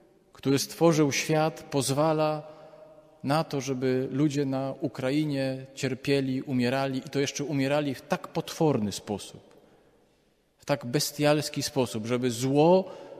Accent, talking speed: native, 120 wpm